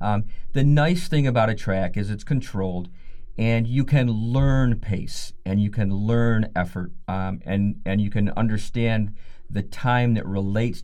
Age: 50-69